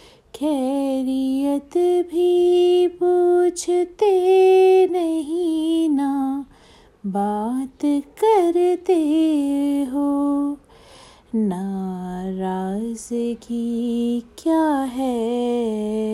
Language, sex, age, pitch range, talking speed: Hindi, female, 30-49, 215-285 Hz, 45 wpm